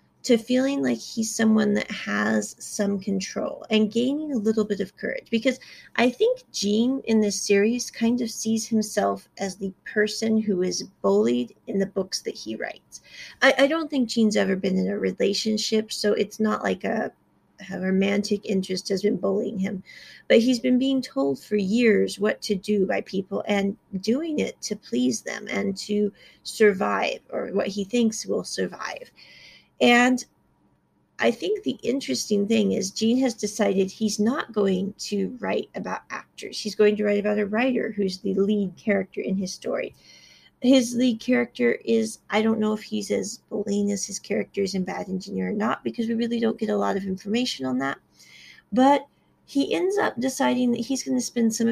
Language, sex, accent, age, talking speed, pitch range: English, female, American, 30-49, 185 wpm, 200-235 Hz